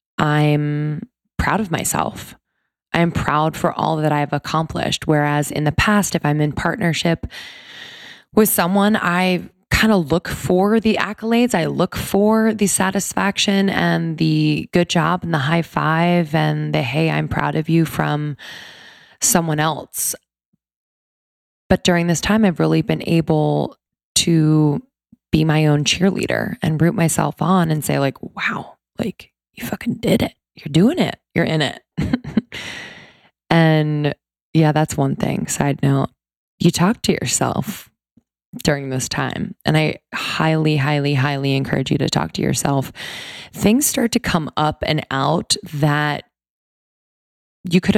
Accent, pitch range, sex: American, 150-185 Hz, female